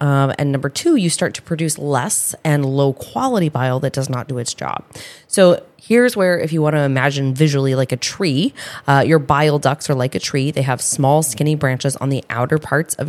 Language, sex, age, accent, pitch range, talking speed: English, female, 20-39, American, 135-160 Hz, 225 wpm